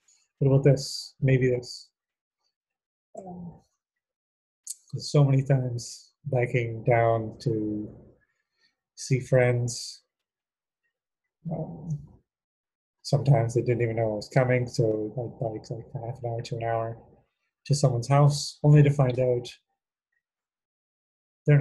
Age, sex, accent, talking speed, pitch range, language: 30-49, male, American, 110 wpm, 115-145 Hz, English